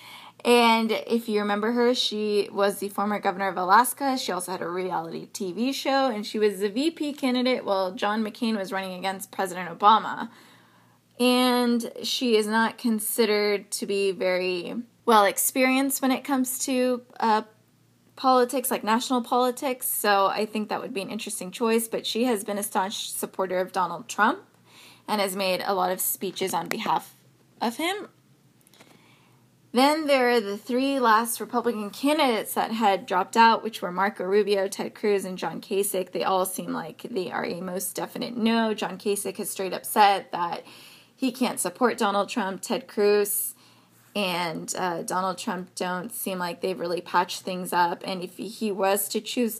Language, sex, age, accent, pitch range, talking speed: English, female, 20-39, American, 195-240 Hz, 175 wpm